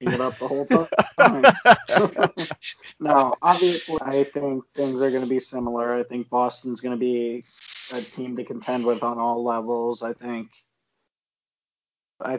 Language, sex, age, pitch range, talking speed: English, male, 20-39, 120-130 Hz, 155 wpm